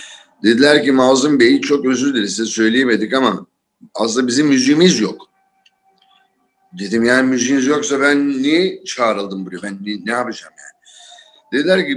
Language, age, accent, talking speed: Turkish, 50-69, native, 145 wpm